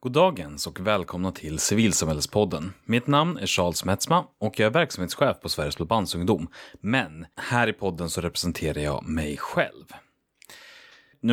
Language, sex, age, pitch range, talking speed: Swedish, male, 30-49, 85-110 Hz, 150 wpm